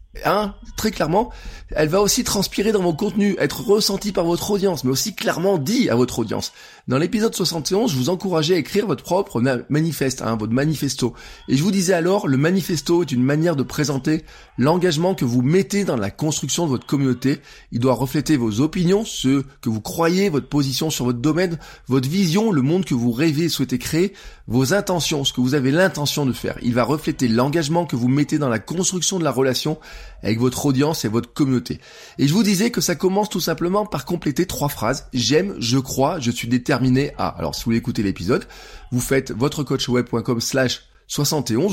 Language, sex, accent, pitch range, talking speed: French, male, French, 125-185 Hz, 205 wpm